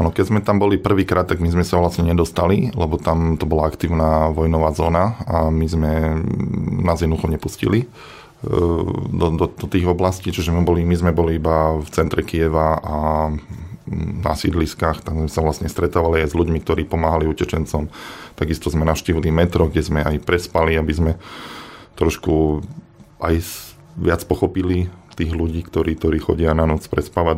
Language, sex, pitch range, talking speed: Slovak, male, 80-85 Hz, 165 wpm